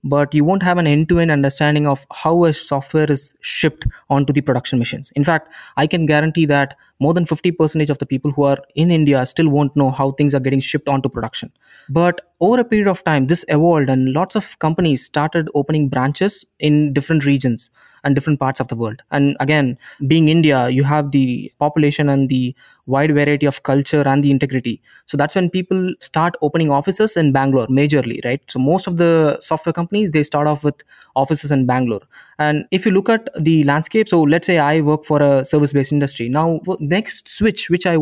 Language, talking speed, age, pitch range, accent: English, 205 wpm, 20-39, 140-170 Hz, Indian